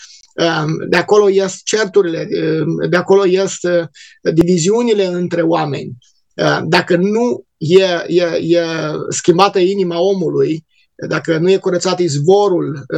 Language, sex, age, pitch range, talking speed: Romanian, male, 20-39, 165-195 Hz, 100 wpm